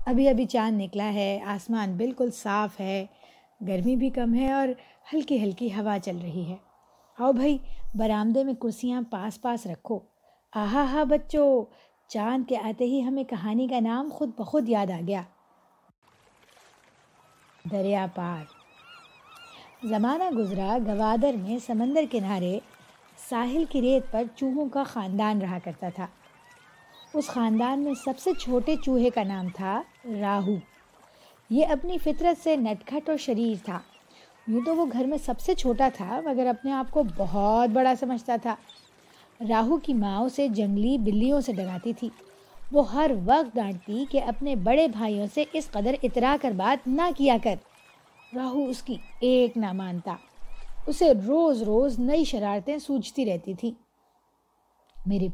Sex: female